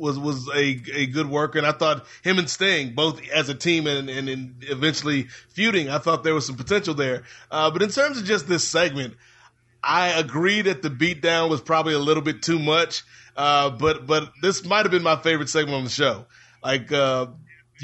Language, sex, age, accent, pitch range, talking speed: English, male, 30-49, American, 150-175 Hz, 210 wpm